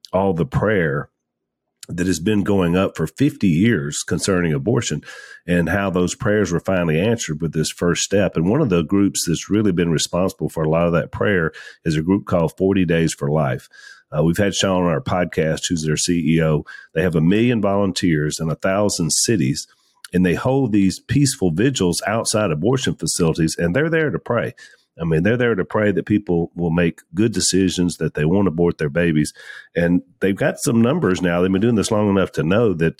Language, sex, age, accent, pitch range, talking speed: English, male, 40-59, American, 85-100 Hz, 205 wpm